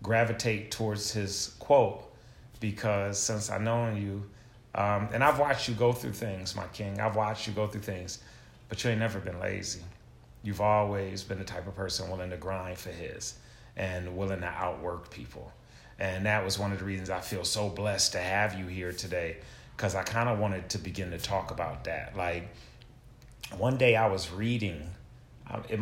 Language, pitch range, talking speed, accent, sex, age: English, 100-125 Hz, 190 wpm, American, male, 30-49